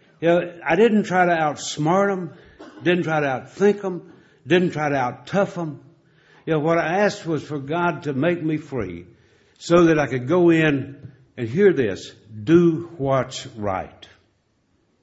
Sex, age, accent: male, 60-79, American